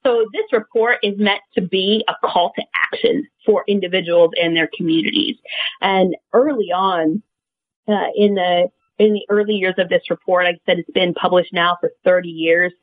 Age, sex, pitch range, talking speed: 40-59, female, 170-215 Hz, 180 wpm